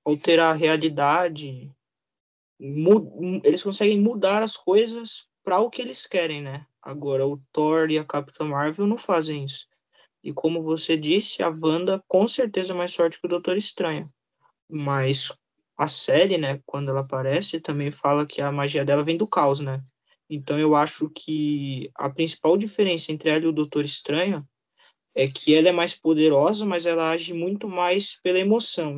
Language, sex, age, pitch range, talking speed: Portuguese, male, 20-39, 150-180 Hz, 170 wpm